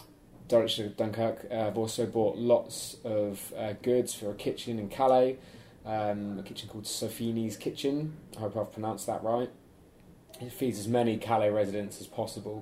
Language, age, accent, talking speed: English, 20-39, British, 150 wpm